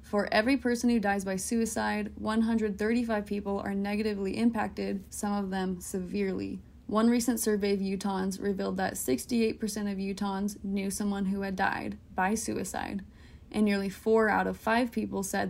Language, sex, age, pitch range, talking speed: English, female, 20-39, 200-230 Hz, 160 wpm